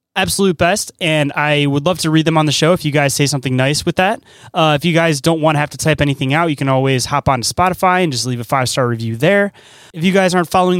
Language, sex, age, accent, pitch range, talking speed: English, male, 20-39, American, 140-180 Hz, 290 wpm